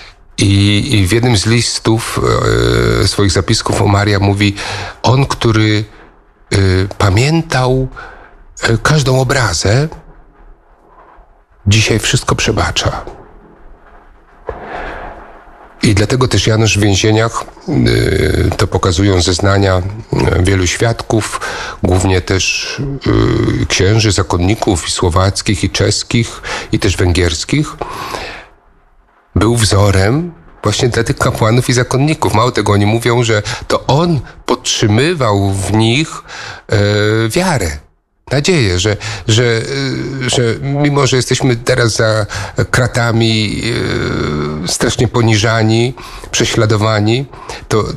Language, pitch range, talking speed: Polish, 100-120 Hz, 90 wpm